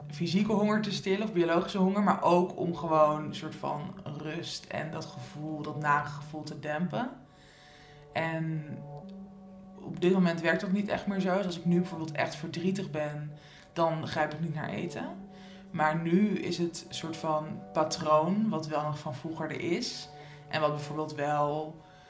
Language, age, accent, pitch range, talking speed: Dutch, 20-39, Dutch, 150-175 Hz, 175 wpm